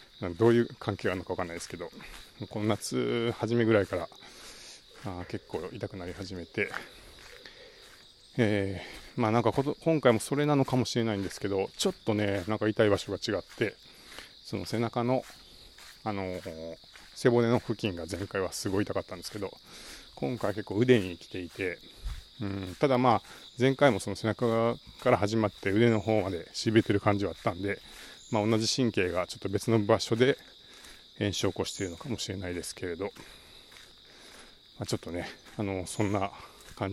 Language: Japanese